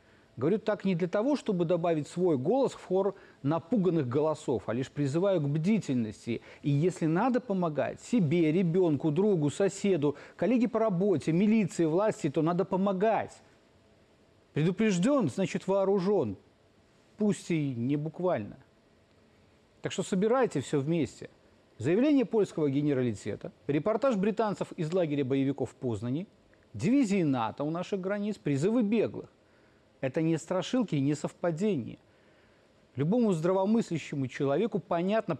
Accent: native